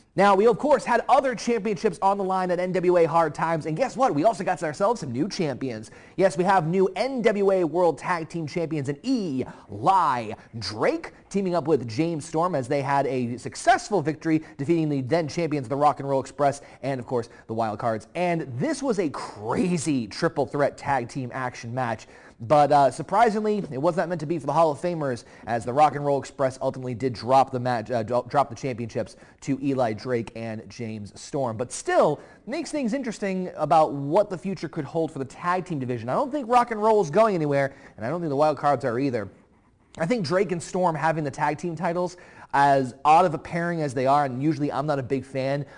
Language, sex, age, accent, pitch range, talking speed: English, male, 30-49, American, 135-180 Hz, 215 wpm